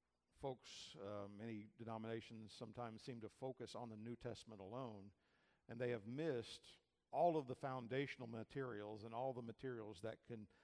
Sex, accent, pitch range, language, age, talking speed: male, American, 110-140 Hz, English, 50-69, 160 wpm